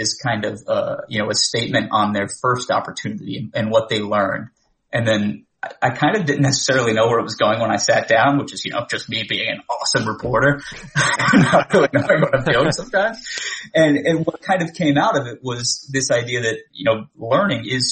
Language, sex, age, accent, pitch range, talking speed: English, male, 30-49, American, 110-140 Hz, 200 wpm